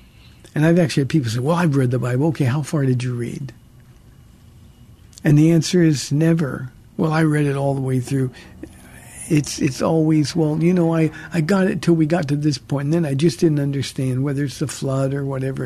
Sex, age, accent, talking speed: male, 60-79, American, 220 wpm